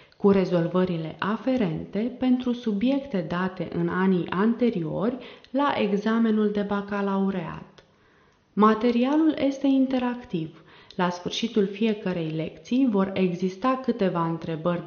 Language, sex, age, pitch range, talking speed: Romanian, female, 30-49, 190-250 Hz, 95 wpm